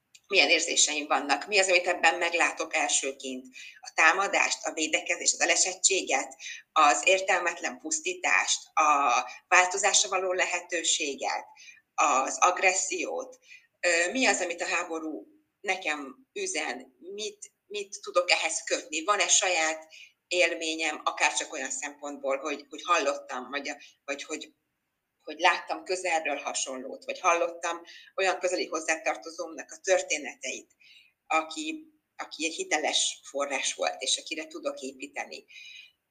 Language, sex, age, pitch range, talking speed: Hungarian, female, 30-49, 155-210 Hz, 115 wpm